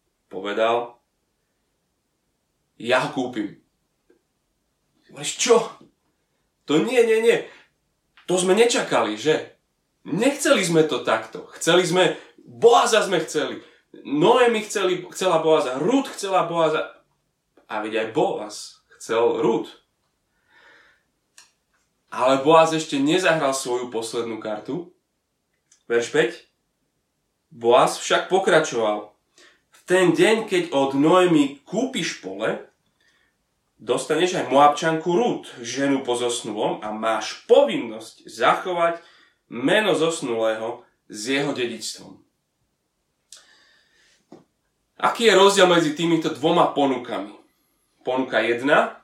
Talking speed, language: 95 wpm, Slovak